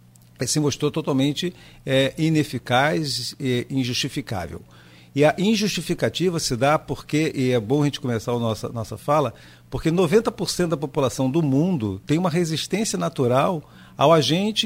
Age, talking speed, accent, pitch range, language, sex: 50-69, 145 wpm, Brazilian, 115-155 Hz, Portuguese, male